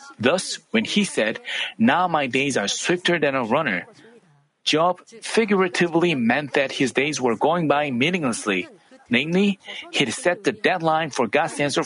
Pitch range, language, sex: 140-185 Hz, Korean, male